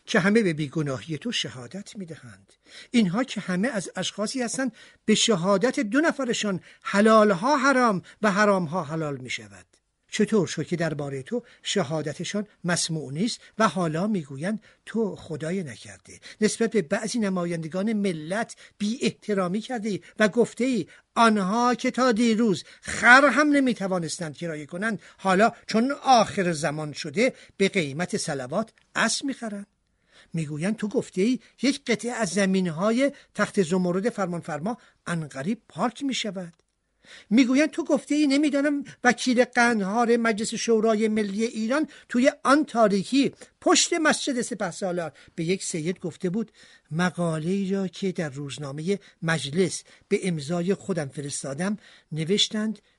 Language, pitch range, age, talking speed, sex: Persian, 175-230 Hz, 50-69, 135 wpm, male